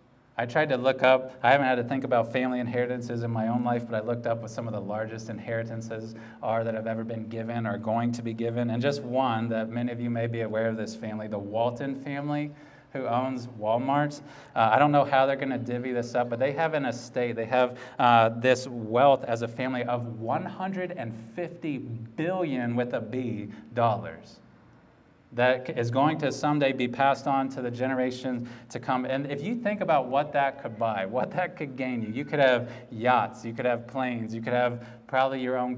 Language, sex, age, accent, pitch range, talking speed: English, male, 30-49, American, 120-140 Hz, 220 wpm